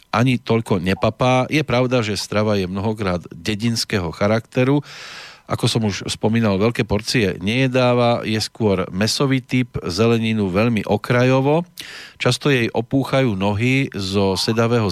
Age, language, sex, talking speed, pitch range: 40-59, Slovak, male, 125 wpm, 100-120 Hz